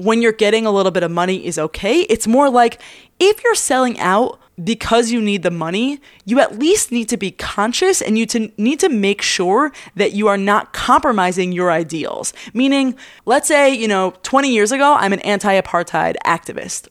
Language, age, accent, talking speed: English, 20-39, American, 190 wpm